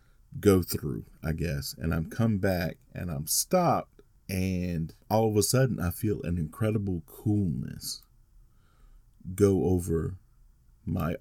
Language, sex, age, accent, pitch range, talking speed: English, male, 40-59, American, 90-115 Hz, 135 wpm